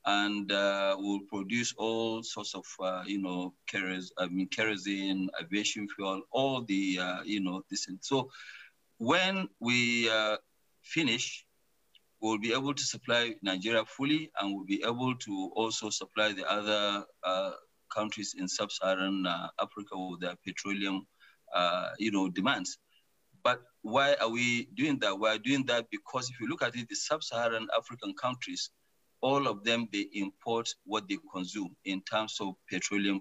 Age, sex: 40-59, male